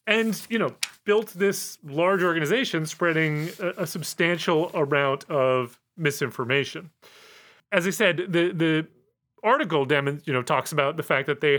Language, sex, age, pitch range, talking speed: English, male, 30-49, 130-175 Hz, 150 wpm